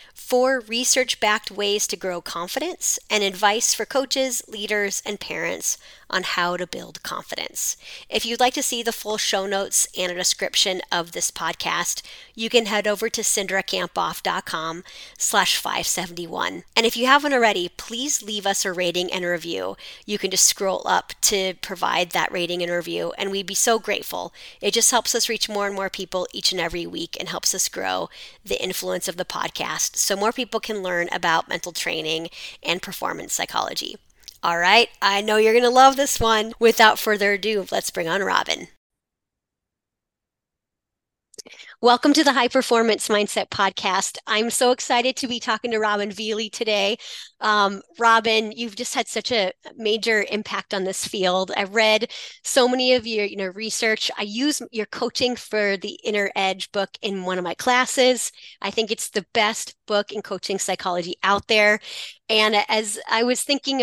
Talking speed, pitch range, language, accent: 175 wpm, 190-230 Hz, English, American